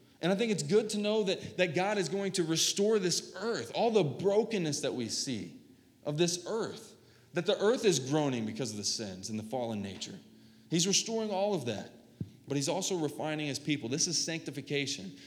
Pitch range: 125-180 Hz